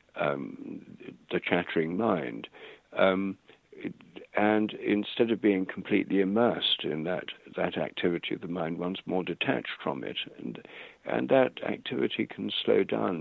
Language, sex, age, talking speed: English, male, 60-79, 135 wpm